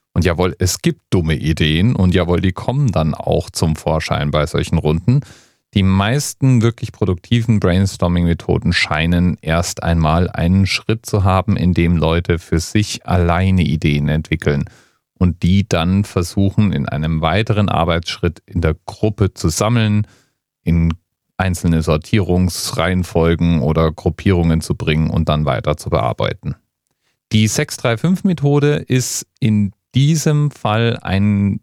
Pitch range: 85-110 Hz